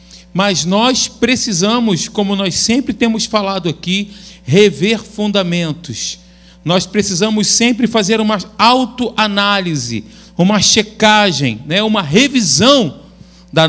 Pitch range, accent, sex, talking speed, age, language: 170-220 Hz, Brazilian, male, 100 wpm, 40-59, Portuguese